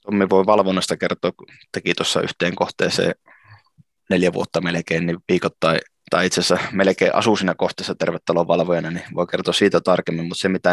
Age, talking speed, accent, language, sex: 20-39, 150 wpm, native, Finnish, male